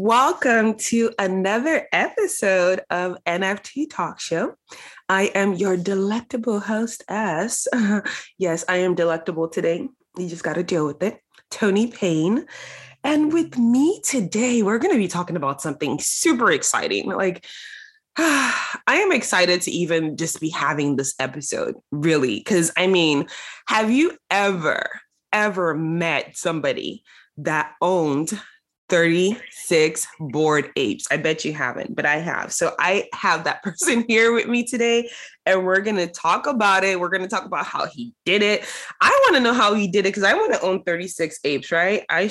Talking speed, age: 165 wpm, 20-39